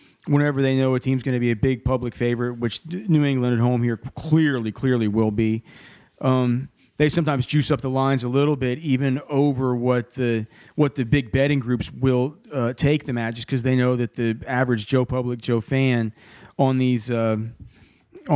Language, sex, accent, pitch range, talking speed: English, male, American, 120-140 Hz, 195 wpm